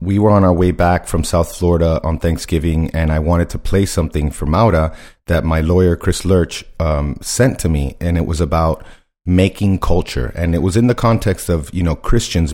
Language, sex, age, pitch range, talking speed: English, male, 30-49, 80-100 Hz, 210 wpm